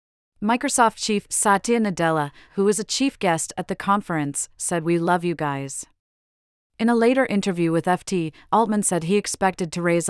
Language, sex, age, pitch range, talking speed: English, female, 30-49, 160-200 Hz, 170 wpm